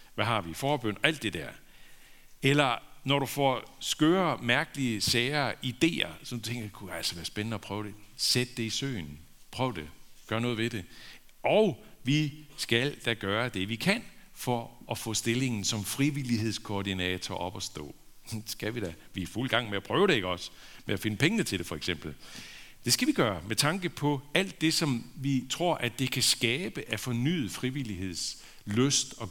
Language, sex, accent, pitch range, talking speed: Danish, male, native, 100-140 Hz, 195 wpm